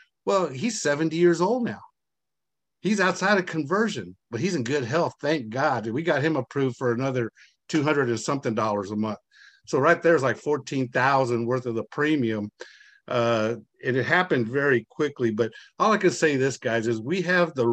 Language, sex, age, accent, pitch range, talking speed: English, male, 50-69, American, 125-170 Hz, 190 wpm